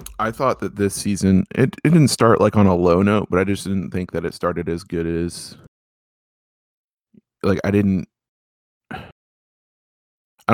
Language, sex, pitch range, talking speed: English, male, 85-100 Hz, 165 wpm